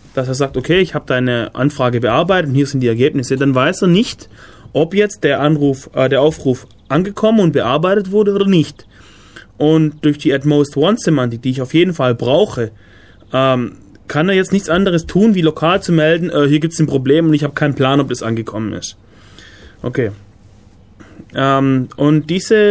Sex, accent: male, German